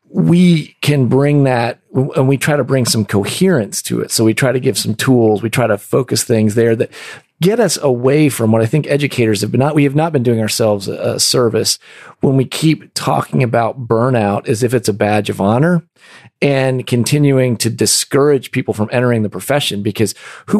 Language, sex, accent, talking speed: English, male, American, 205 wpm